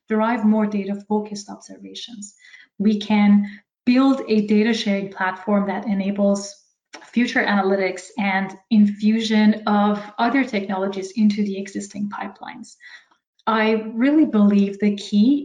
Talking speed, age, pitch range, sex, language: 115 wpm, 20-39, 200-220 Hz, female, English